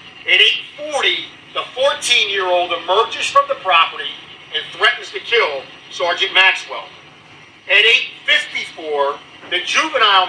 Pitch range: 180-295 Hz